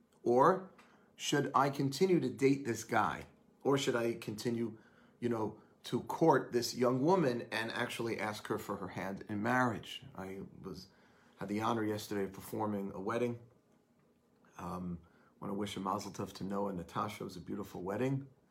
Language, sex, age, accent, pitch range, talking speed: English, male, 40-59, American, 115-145 Hz, 170 wpm